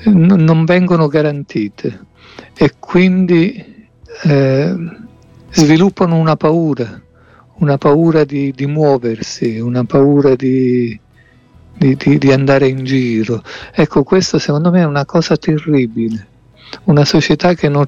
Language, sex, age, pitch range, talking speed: Italian, male, 50-69, 125-155 Hz, 115 wpm